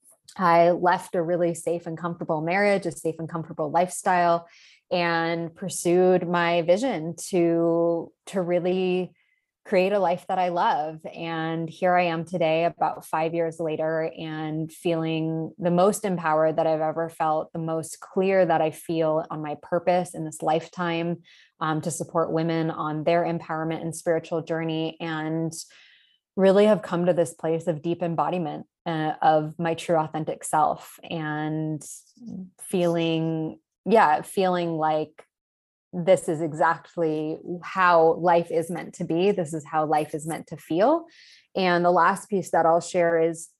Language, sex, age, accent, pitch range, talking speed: English, female, 20-39, American, 160-175 Hz, 155 wpm